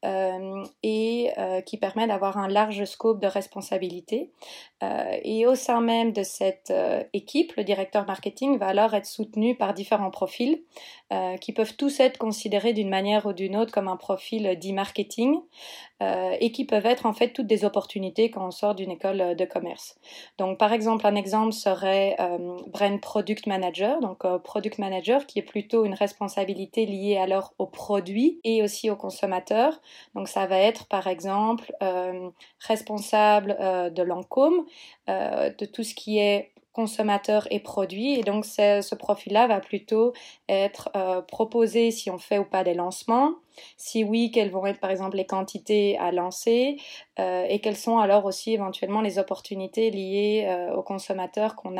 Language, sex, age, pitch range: French, female, 30-49, 190-225 Hz